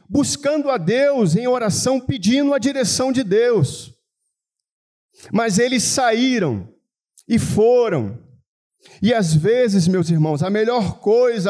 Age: 50-69